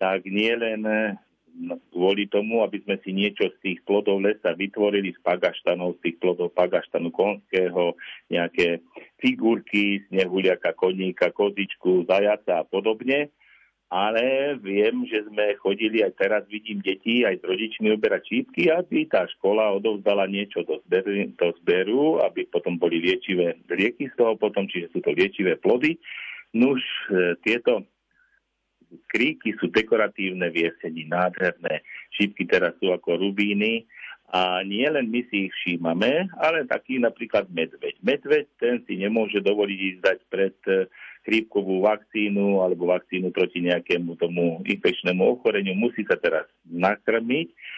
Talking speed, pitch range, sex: 135 wpm, 95-120 Hz, male